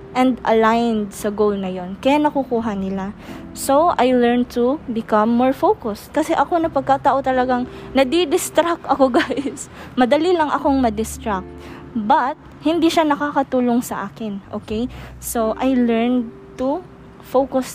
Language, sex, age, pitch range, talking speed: English, female, 20-39, 220-275 Hz, 130 wpm